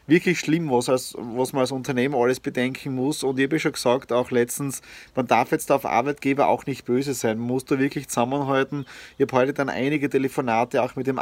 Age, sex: 30-49, male